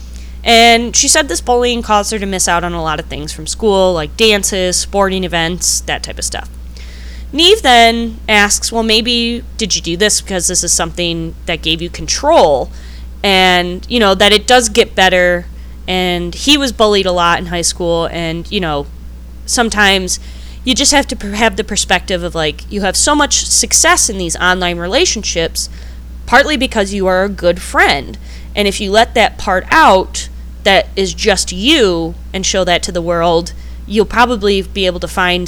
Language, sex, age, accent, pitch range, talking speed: English, female, 20-39, American, 160-210 Hz, 190 wpm